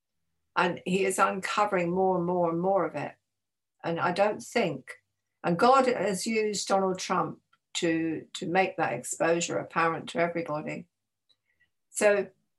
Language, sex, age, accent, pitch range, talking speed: English, female, 60-79, British, 160-205 Hz, 145 wpm